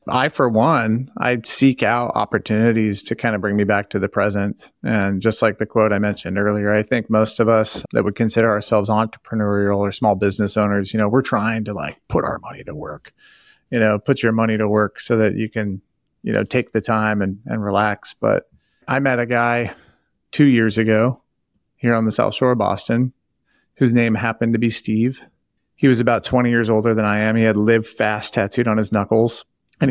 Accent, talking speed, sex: American, 215 wpm, male